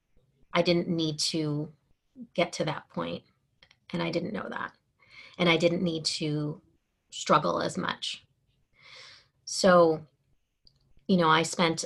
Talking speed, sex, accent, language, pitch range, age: 130 wpm, female, American, English, 150-180 Hz, 30-49